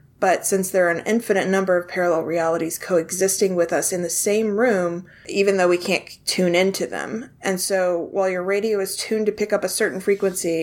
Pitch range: 170-200 Hz